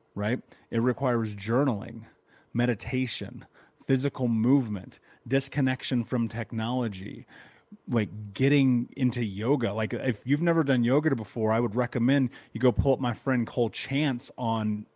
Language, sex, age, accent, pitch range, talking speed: English, male, 30-49, American, 115-140 Hz, 130 wpm